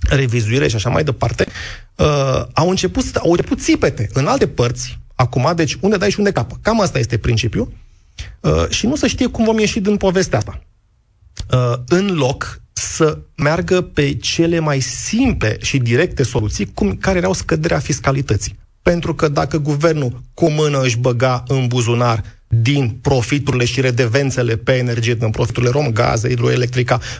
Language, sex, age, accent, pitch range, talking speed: Romanian, male, 30-49, native, 120-155 Hz, 160 wpm